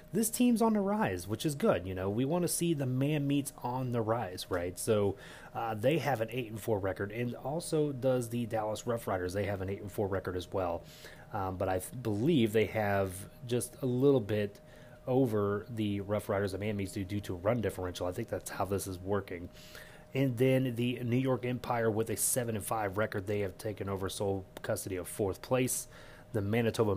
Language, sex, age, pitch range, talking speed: English, male, 30-49, 100-130 Hz, 225 wpm